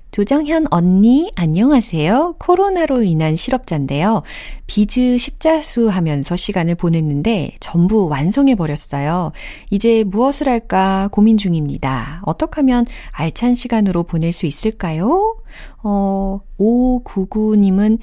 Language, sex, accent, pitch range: Korean, female, native, 155-220 Hz